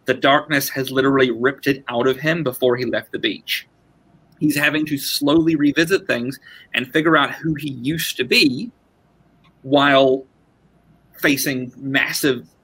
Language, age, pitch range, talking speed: English, 30-49, 125-165 Hz, 145 wpm